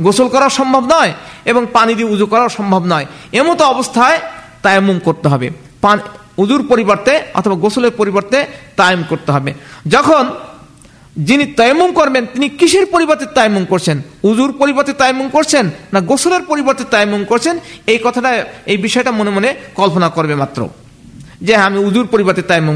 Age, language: 50-69, Bengali